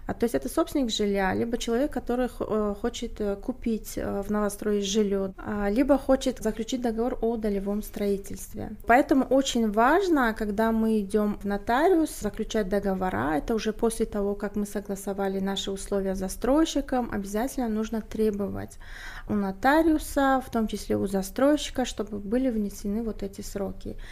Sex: female